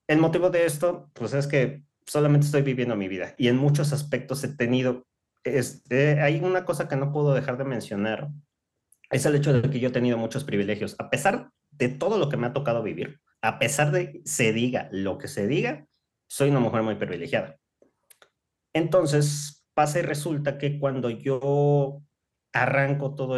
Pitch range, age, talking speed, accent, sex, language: 110-145 Hz, 30-49, 180 wpm, Mexican, male, Spanish